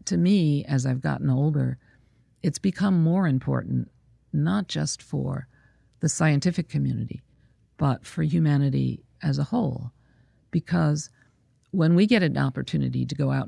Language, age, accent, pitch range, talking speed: English, 50-69, American, 125-175 Hz, 140 wpm